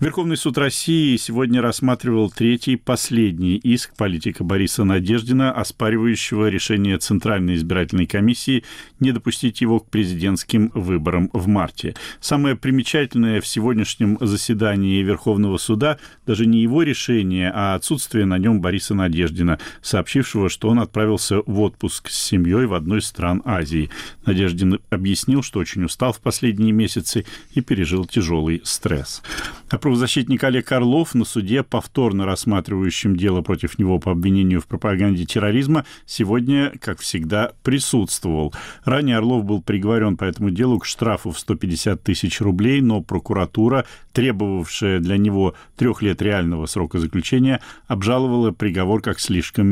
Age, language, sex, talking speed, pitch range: 40-59, Russian, male, 135 wpm, 95-120 Hz